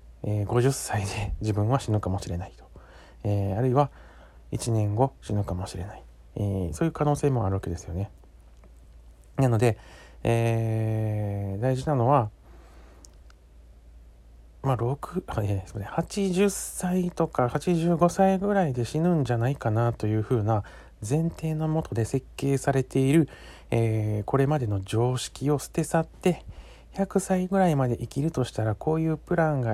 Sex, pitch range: male, 95-140 Hz